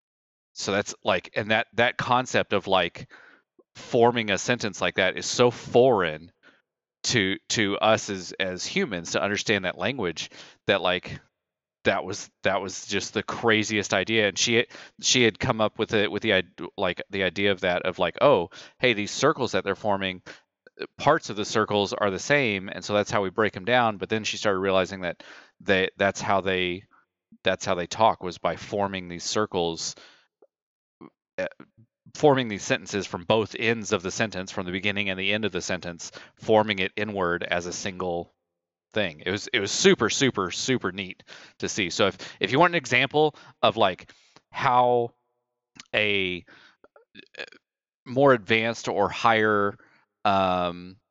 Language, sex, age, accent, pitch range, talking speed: English, male, 30-49, American, 95-110 Hz, 170 wpm